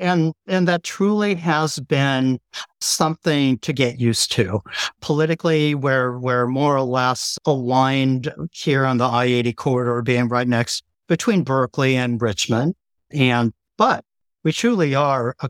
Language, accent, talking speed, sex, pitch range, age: English, American, 140 wpm, male, 120-145 Hz, 50-69